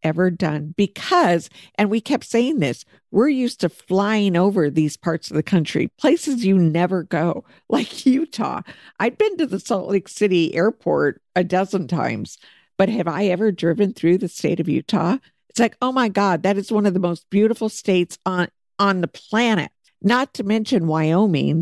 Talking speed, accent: 185 wpm, American